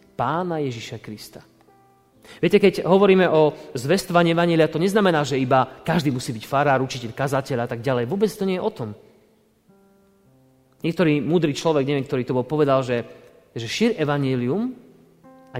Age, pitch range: 30-49, 125-170 Hz